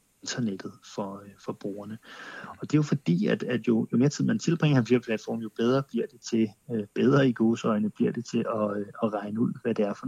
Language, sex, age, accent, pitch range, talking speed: Danish, male, 30-49, native, 105-120 Hz, 220 wpm